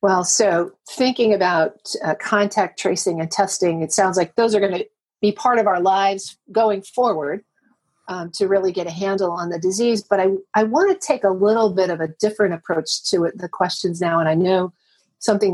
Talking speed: 200 wpm